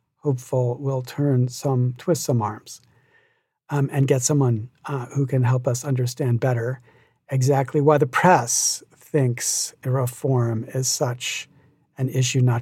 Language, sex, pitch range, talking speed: English, male, 130-165 Hz, 140 wpm